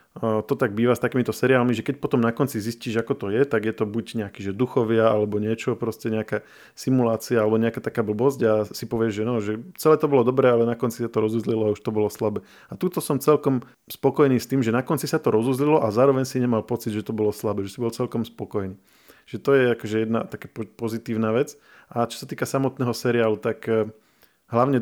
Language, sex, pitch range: Slovak, male, 110-125 Hz